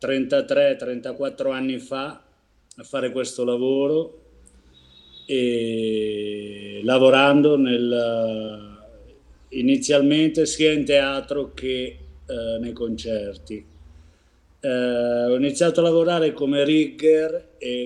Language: Italian